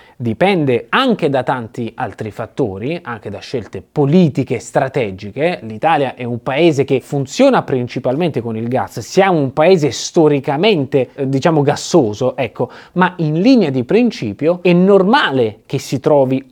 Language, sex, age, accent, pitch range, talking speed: Italian, male, 30-49, native, 130-185 Hz, 140 wpm